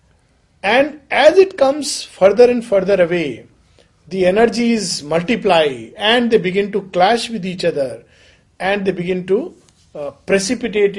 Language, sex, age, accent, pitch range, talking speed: English, male, 50-69, Indian, 170-225 Hz, 135 wpm